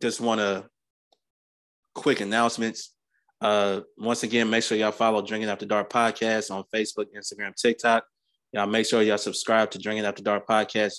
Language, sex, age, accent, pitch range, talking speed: English, male, 20-39, American, 100-115 Hz, 165 wpm